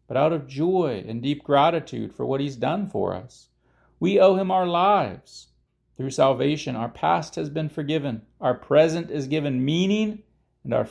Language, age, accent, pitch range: English, 40-59, American, 125-185 Hz